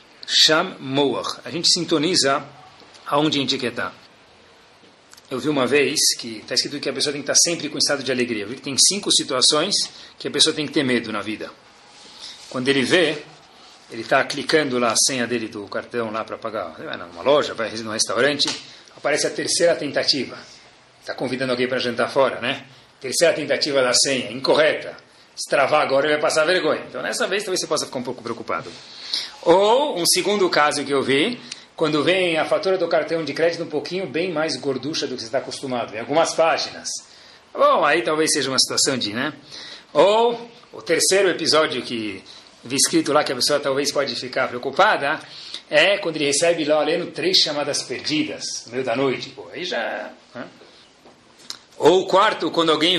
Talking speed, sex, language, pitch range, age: 190 wpm, male, Portuguese, 130-170 Hz, 40-59